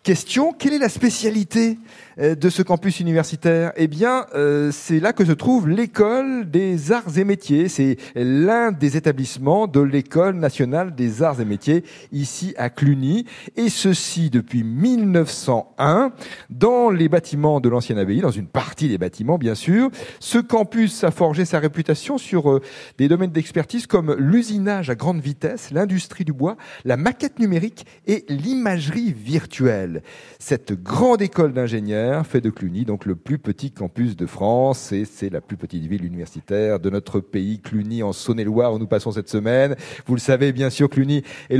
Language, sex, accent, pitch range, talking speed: French, male, French, 130-195 Hz, 165 wpm